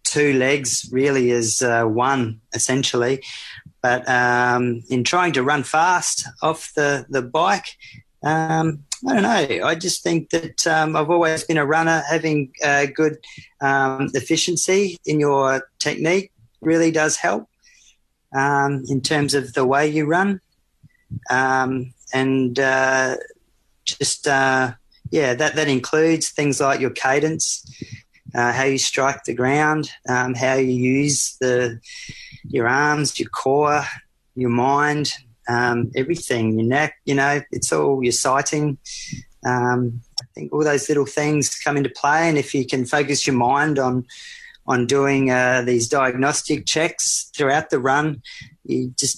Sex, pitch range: male, 130-150 Hz